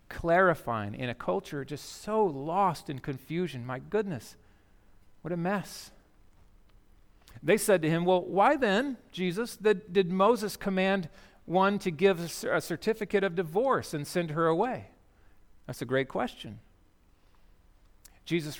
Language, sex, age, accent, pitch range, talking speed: English, male, 50-69, American, 125-200 Hz, 135 wpm